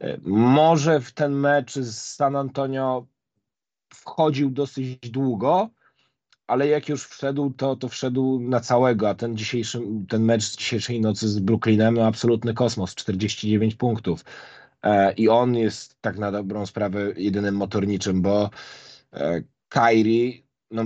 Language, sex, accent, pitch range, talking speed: Polish, male, native, 110-130 Hz, 140 wpm